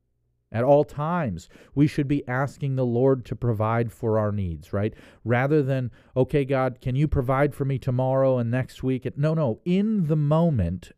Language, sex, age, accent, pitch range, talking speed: English, male, 40-59, American, 100-140 Hz, 180 wpm